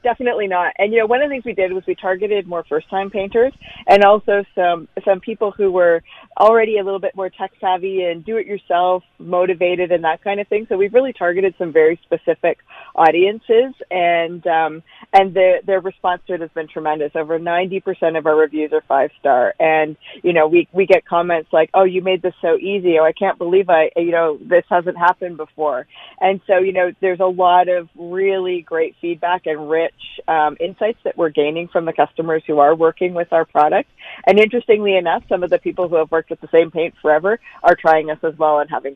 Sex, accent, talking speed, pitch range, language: female, American, 220 wpm, 160-195 Hz, English